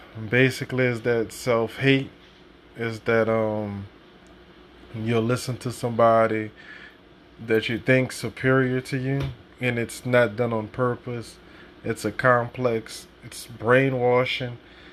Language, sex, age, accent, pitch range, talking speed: English, male, 20-39, American, 110-130 Hz, 115 wpm